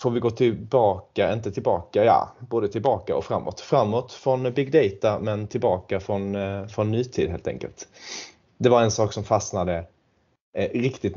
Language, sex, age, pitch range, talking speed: Swedish, male, 30-49, 100-115 Hz, 155 wpm